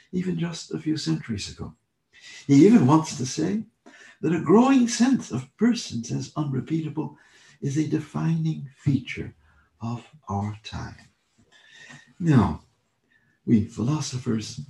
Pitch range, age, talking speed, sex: 110-155 Hz, 60-79, 120 wpm, male